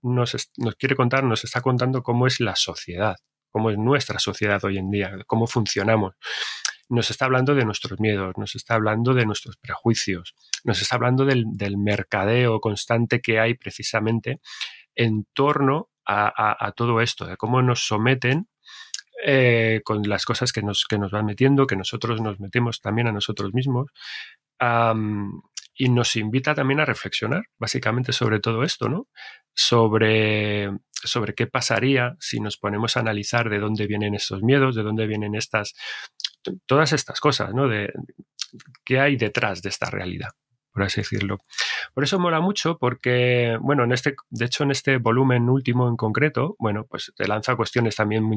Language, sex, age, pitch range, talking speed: Spanish, male, 30-49, 105-130 Hz, 170 wpm